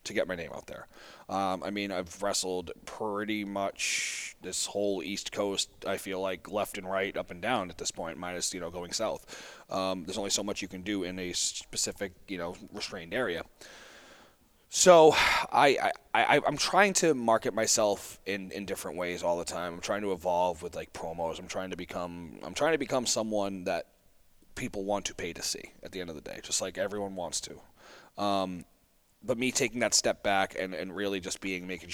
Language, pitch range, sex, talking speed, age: English, 90-100 Hz, male, 210 wpm, 30-49